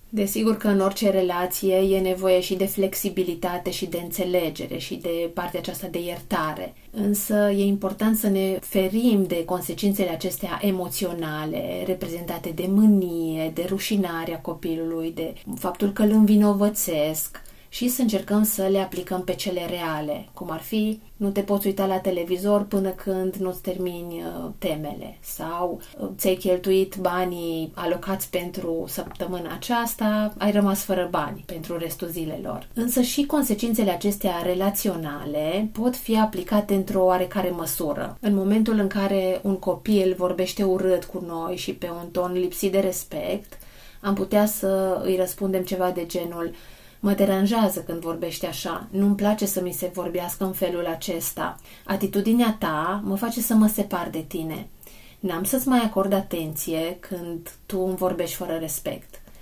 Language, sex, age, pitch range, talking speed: Romanian, female, 30-49, 175-205 Hz, 150 wpm